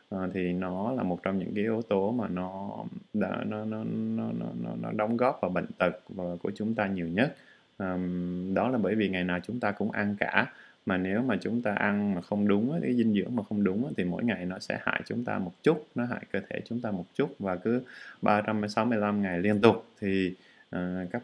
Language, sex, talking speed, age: Vietnamese, male, 230 wpm, 20-39